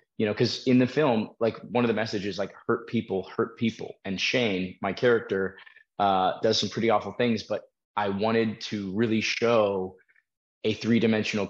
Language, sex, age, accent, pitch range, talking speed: English, male, 20-39, American, 95-110 Hz, 185 wpm